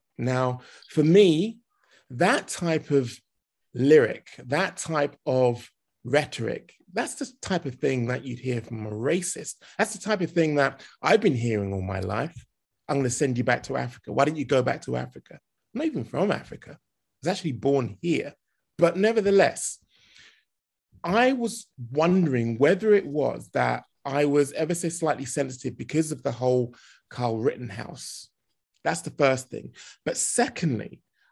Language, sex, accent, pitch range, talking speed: English, male, British, 125-170 Hz, 165 wpm